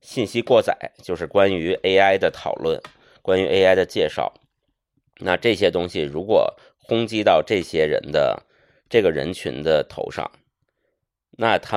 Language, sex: Chinese, male